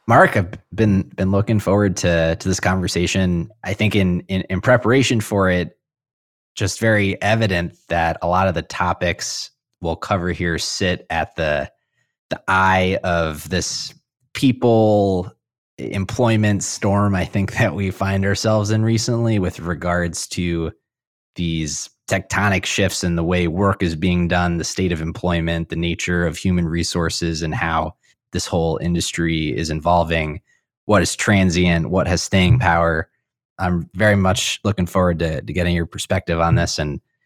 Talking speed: 155 wpm